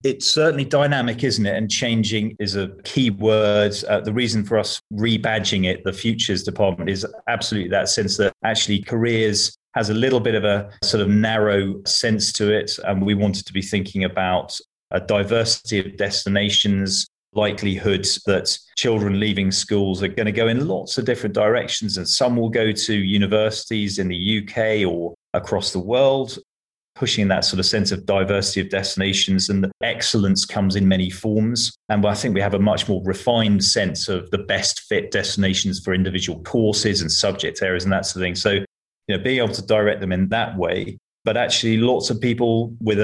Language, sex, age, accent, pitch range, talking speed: English, male, 30-49, British, 95-110 Hz, 190 wpm